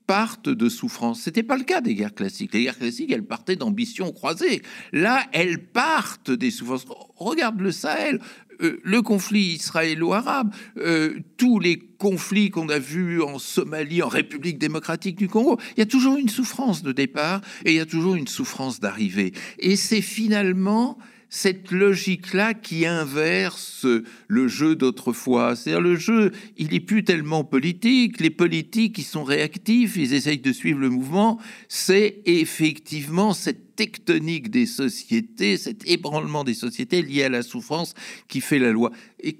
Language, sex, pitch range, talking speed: French, male, 150-220 Hz, 160 wpm